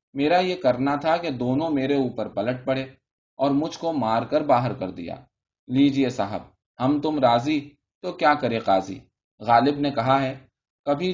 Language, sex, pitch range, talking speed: Urdu, male, 115-150 Hz, 170 wpm